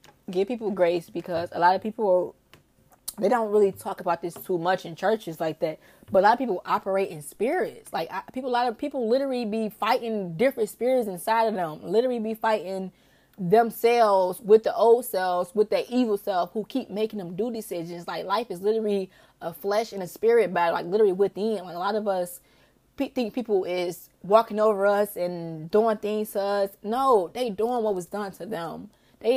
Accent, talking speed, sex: American, 200 wpm, female